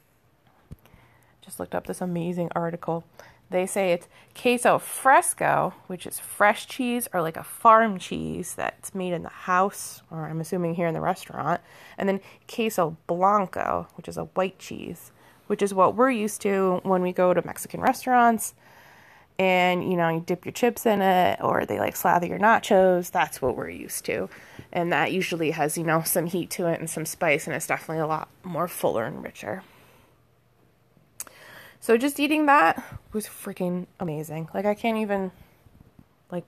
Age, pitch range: 20-39, 170-210 Hz